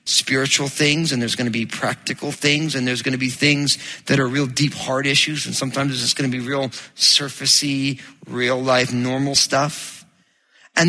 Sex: male